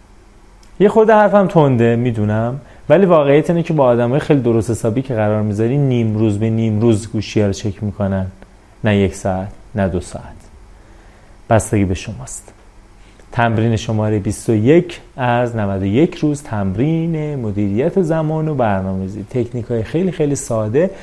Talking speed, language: 150 wpm, Persian